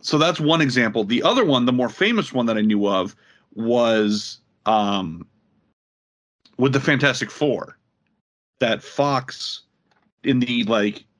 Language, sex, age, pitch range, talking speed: English, male, 40-59, 110-130 Hz, 140 wpm